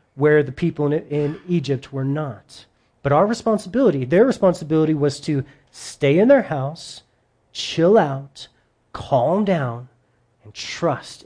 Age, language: 30-49, English